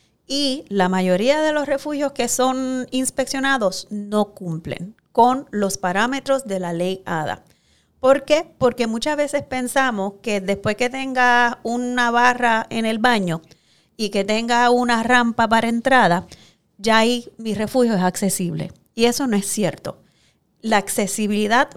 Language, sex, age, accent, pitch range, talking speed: Spanish, female, 30-49, American, 195-250 Hz, 145 wpm